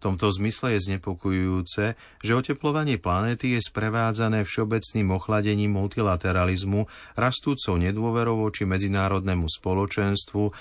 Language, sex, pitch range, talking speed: Slovak, male, 90-110 Hz, 100 wpm